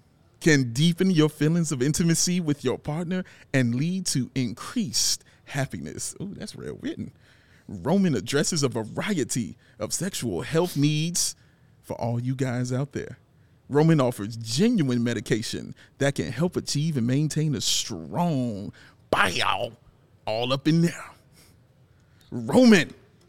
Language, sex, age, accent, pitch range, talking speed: English, male, 40-59, American, 120-165 Hz, 130 wpm